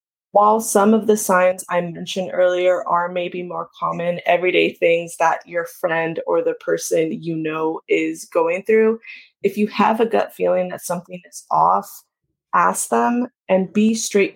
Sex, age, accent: female, 20-39, American